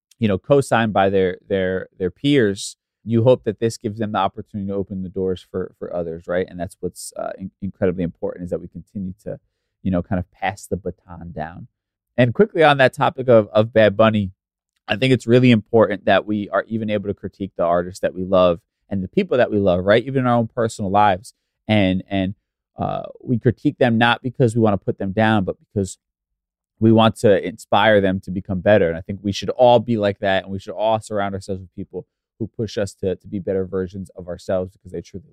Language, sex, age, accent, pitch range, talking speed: English, male, 30-49, American, 95-110 Hz, 235 wpm